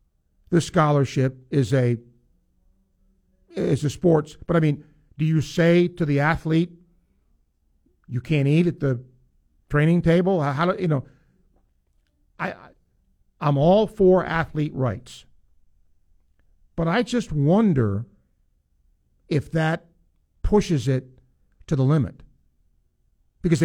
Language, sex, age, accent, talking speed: English, male, 50-69, American, 115 wpm